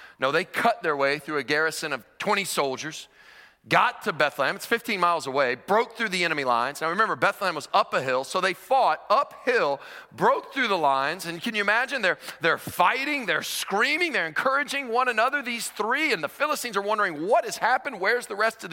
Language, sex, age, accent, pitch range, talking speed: English, male, 40-59, American, 160-260 Hz, 210 wpm